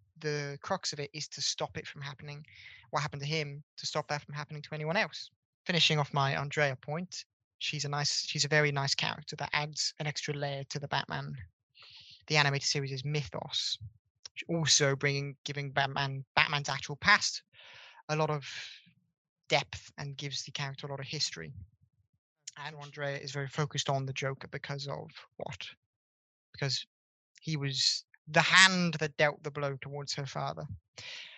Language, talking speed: English, 175 wpm